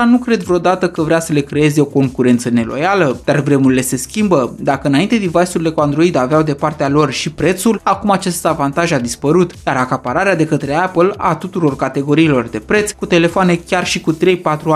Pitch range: 150-195 Hz